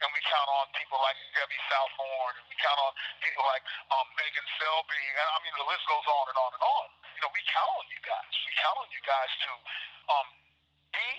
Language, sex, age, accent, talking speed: English, male, 40-59, American, 230 wpm